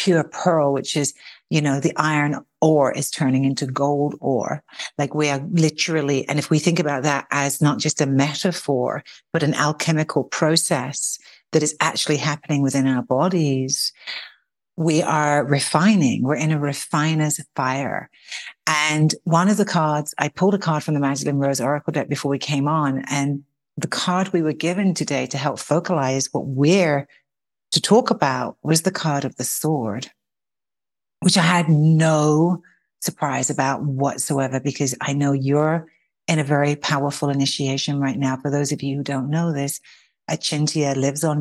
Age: 60-79